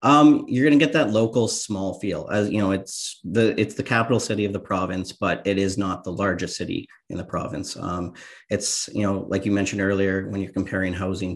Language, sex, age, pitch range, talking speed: English, male, 30-49, 95-105 Hz, 225 wpm